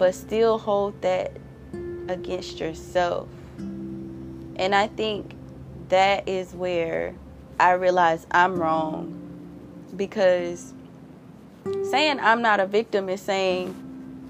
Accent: American